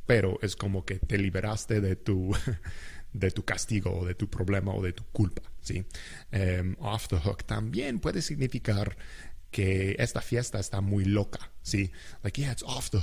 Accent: Mexican